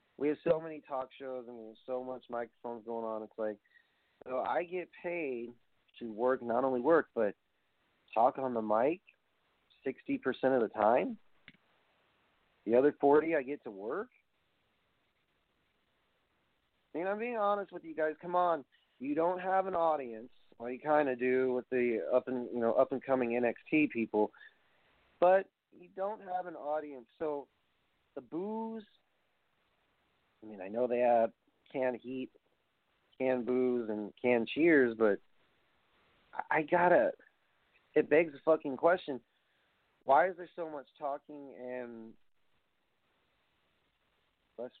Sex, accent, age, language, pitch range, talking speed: male, American, 40-59, English, 120-165 Hz, 150 wpm